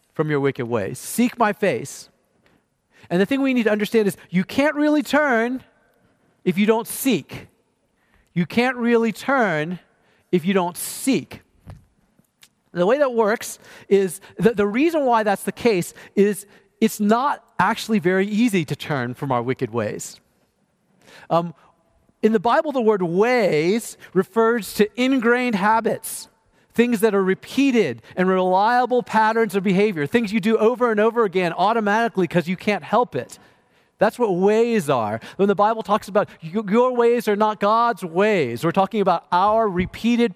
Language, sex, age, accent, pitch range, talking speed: English, male, 40-59, American, 180-230 Hz, 160 wpm